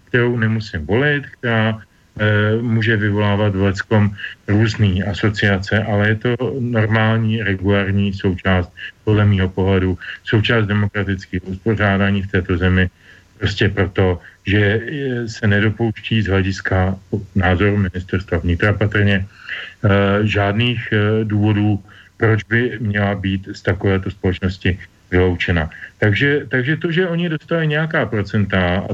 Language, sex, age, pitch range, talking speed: Slovak, male, 40-59, 100-120 Hz, 120 wpm